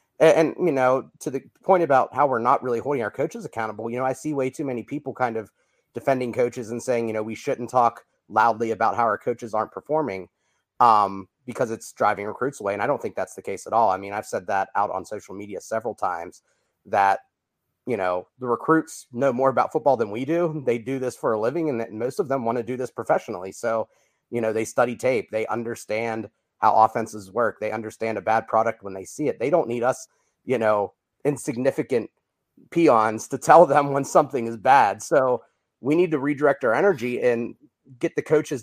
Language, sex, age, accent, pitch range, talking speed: English, male, 30-49, American, 110-135 Hz, 215 wpm